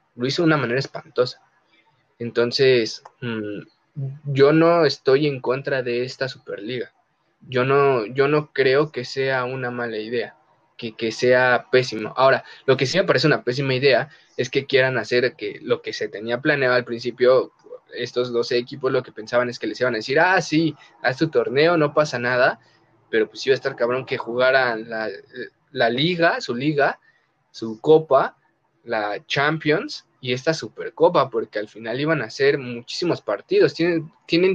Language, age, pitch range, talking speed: Spanish, 20-39, 125-185 Hz, 175 wpm